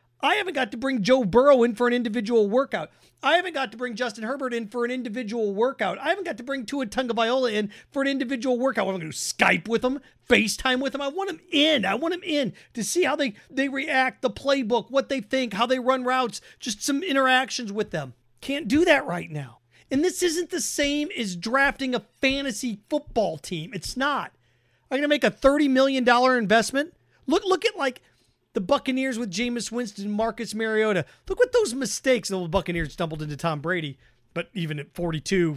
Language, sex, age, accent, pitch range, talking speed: English, male, 40-59, American, 205-270 Hz, 215 wpm